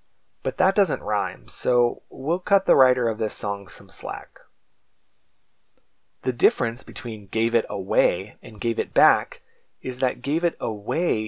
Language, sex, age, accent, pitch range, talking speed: English, male, 20-39, American, 105-135 Hz, 155 wpm